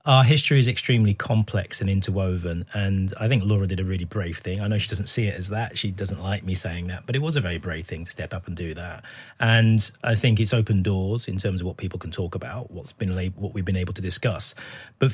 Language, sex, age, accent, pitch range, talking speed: English, male, 30-49, British, 100-130 Hz, 265 wpm